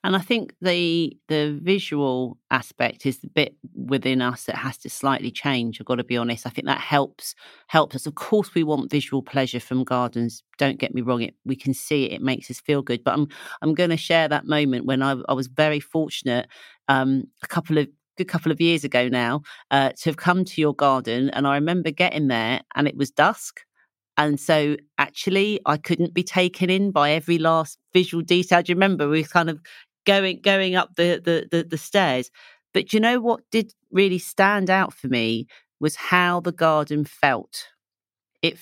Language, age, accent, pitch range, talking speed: English, 40-59, British, 135-175 Hz, 205 wpm